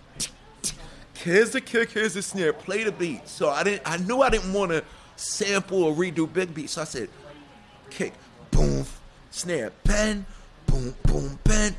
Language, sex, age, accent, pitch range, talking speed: English, male, 50-69, American, 120-185 Hz, 175 wpm